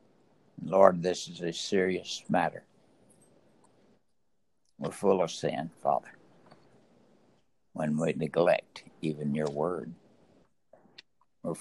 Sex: male